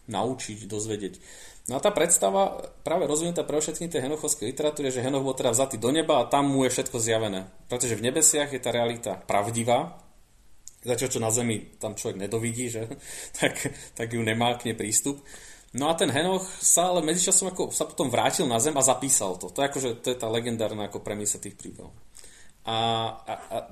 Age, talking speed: 30-49, 180 wpm